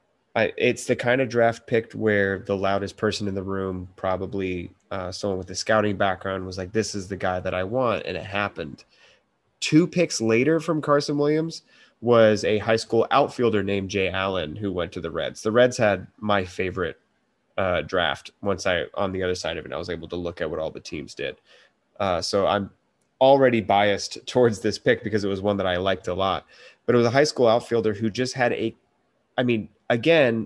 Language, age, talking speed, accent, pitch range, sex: English, 30-49, 215 wpm, American, 95-120 Hz, male